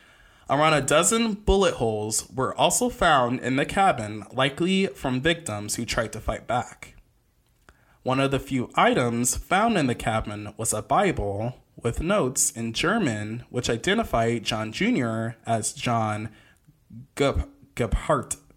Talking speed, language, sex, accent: 135 wpm, English, male, American